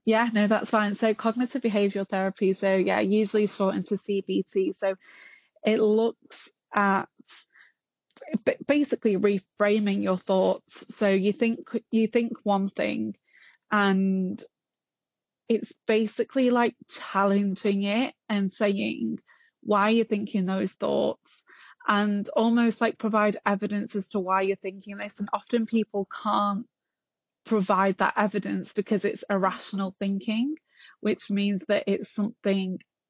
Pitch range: 195-225 Hz